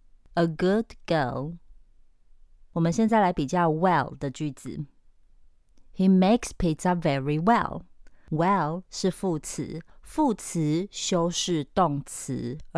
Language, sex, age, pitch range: Chinese, female, 30-49, 155-195 Hz